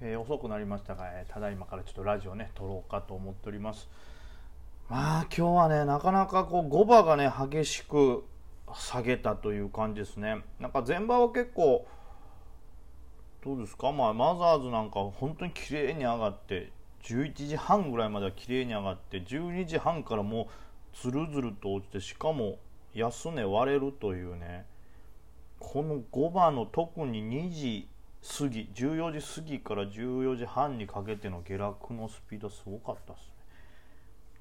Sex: male